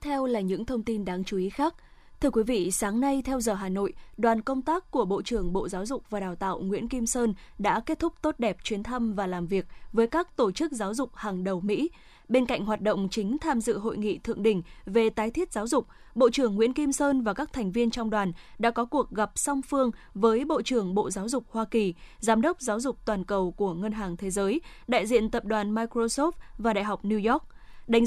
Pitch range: 205-260 Hz